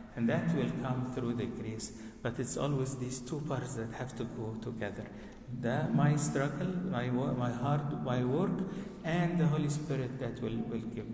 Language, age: English, 50-69